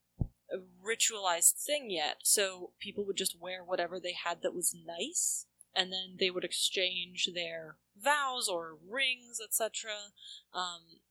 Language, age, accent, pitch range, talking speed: English, 20-39, American, 170-205 Hz, 140 wpm